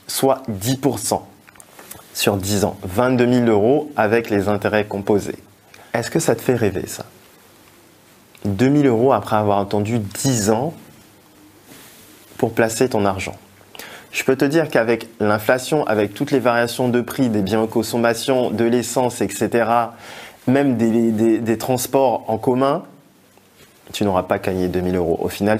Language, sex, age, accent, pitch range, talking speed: French, male, 20-39, French, 110-140 Hz, 155 wpm